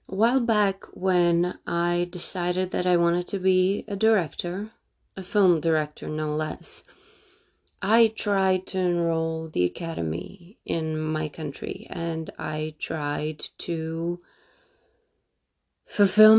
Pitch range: 160-215 Hz